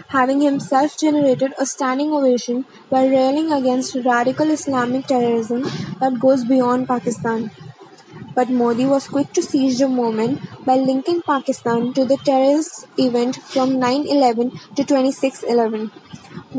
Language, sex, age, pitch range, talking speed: English, female, 20-39, 250-280 Hz, 125 wpm